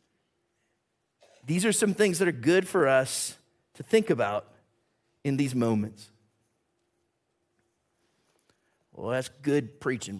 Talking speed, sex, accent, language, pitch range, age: 110 wpm, male, American, English, 105-130 Hz, 50-69